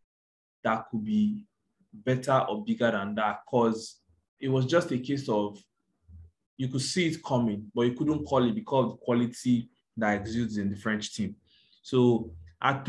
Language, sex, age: English, male, 20-39